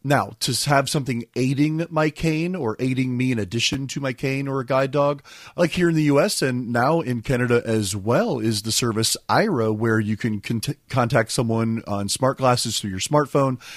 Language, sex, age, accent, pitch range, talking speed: English, male, 30-49, American, 110-135 Hz, 195 wpm